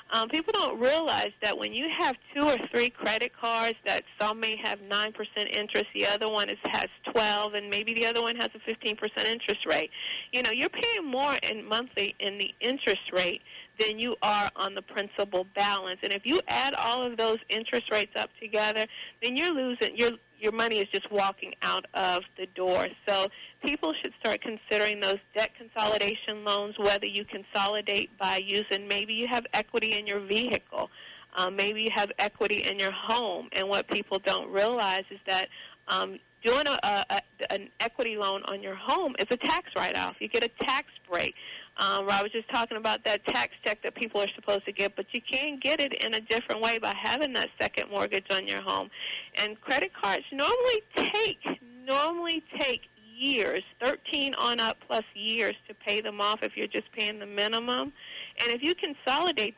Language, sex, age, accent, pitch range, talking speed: English, female, 50-69, American, 205-245 Hz, 195 wpm